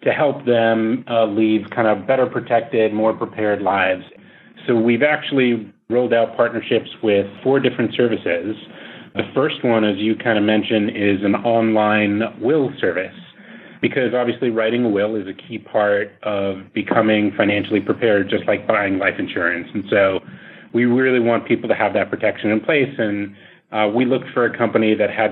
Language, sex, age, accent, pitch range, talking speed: English, male, 30-49, American, 105-120 Hz, 175 wpm